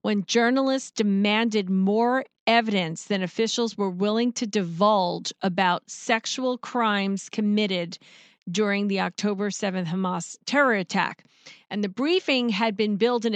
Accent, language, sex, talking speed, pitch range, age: American, English, female, 130 wpm, 195-230 Hz, 40-59